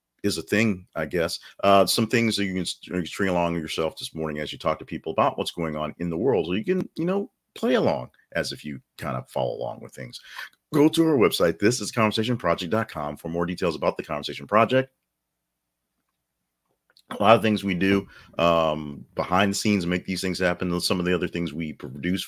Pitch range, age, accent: 85-110 Hz, 40-59, American